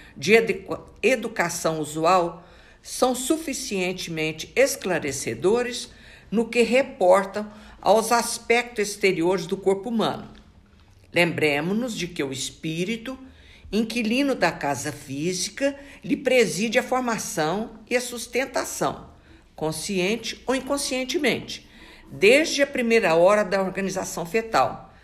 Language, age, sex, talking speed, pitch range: Portuguese, 60-79, female, 100 wpm, 155-230 Hz